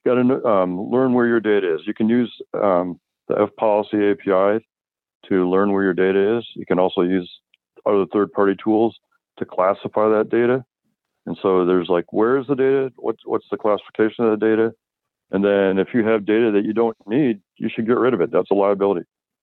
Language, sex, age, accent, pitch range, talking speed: English, male, 40-59, American, 95-115 Hz, 205 wpm